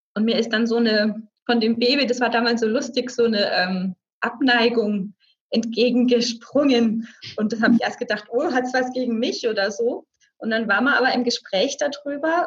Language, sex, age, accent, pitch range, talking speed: German, female, 20-39, German, 215-255 Hz, 190 wpm